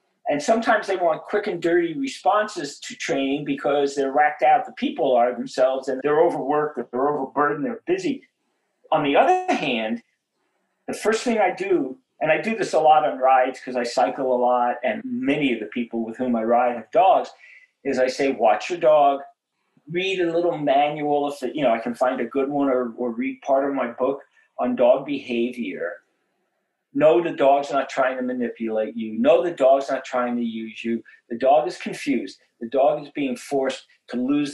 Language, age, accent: English, 50-69, American